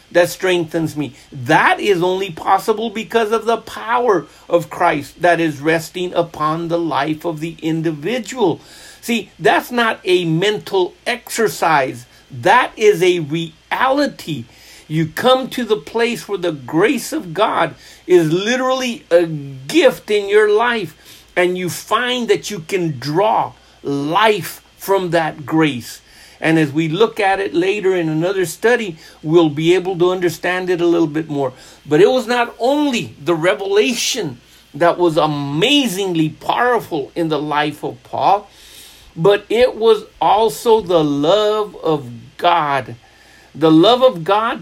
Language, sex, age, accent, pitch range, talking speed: English, male, 50-69, American, 160-230 Hz, 145 wpm